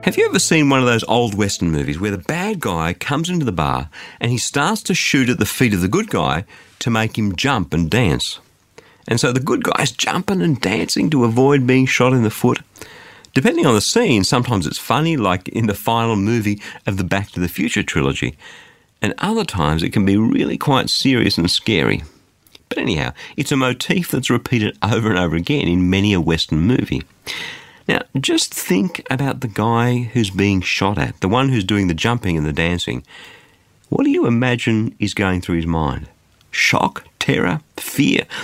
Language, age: English, 50-69